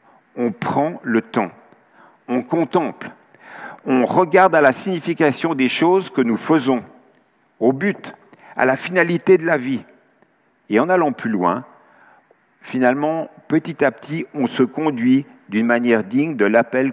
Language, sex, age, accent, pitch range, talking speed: French, male, 60-79, French, 125-195 Hz, 145 wpm